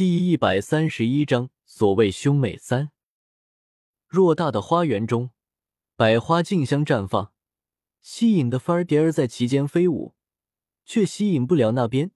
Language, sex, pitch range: Chinese, male, 115-170 Hz